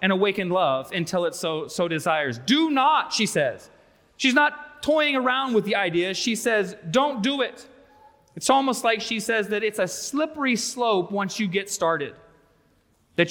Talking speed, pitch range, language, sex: 175 wpm, 165-220 Hz, English, male